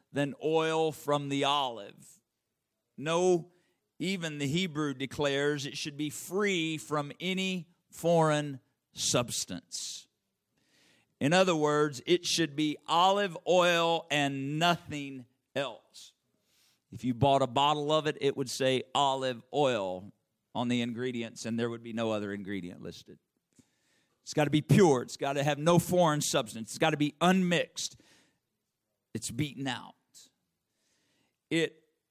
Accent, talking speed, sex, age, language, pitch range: American, 135 wpm, male, 50-69, English, 145-185 Hz